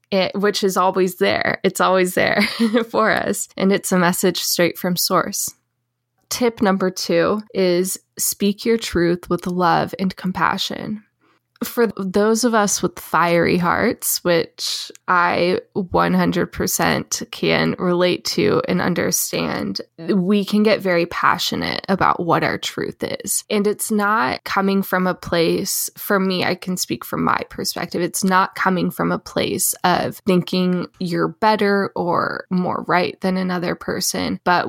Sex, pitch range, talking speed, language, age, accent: female, 180-210 Hz, 145 wpm, English, 10-29, American